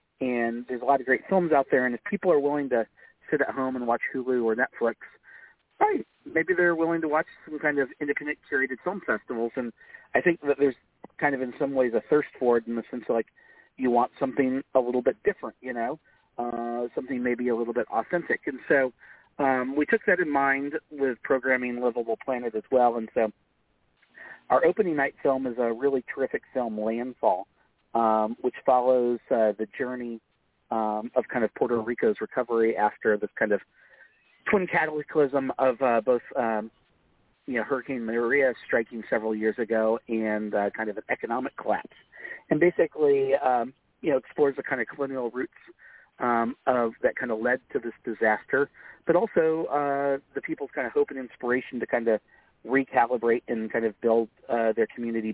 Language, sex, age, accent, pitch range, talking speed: English, male, 40-59, American, 115-140 Hz, 190 wpm